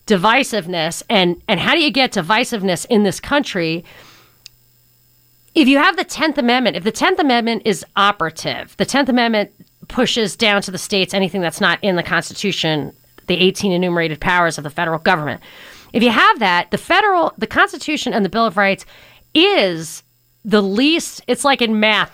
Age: 40-59